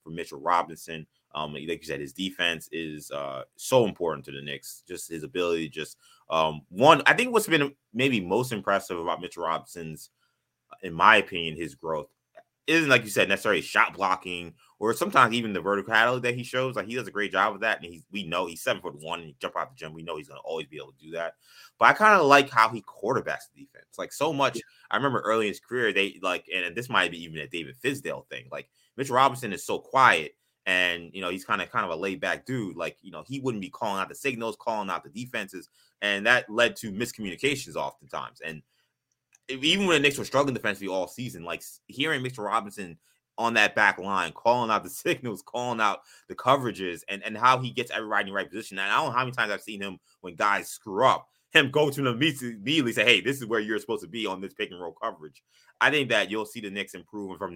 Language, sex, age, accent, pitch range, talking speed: English, male, 20-39, American, 85-130 Hz, 245 wpm